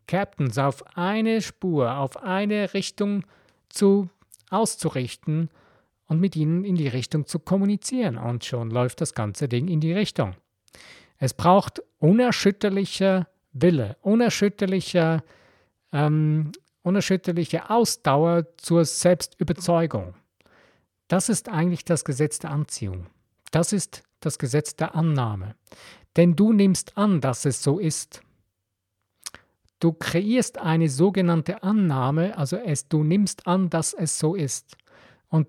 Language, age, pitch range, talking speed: German, 50-69, 130-185 Hz, 120 wpm